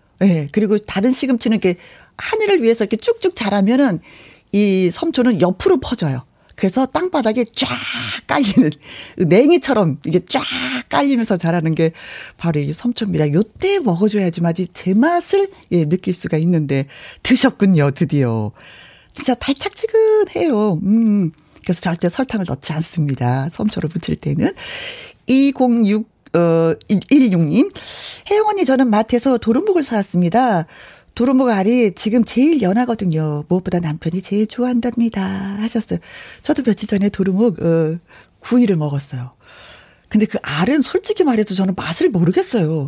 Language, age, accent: Korean, 40-59, native